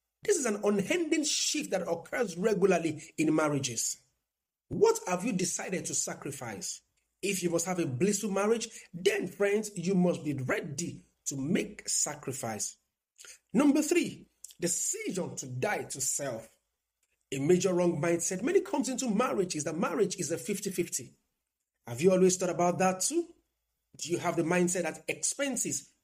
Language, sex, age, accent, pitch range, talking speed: English, male, 50-69, Nigerian, 165-245 Hz, 155 wpm